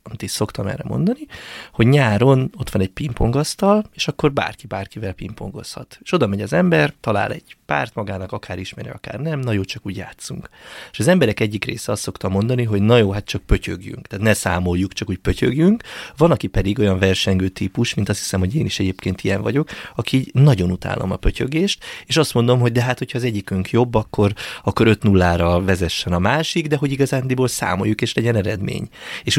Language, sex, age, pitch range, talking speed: Hungarian, male, 30-49, 95-130 Hz, 200 wpm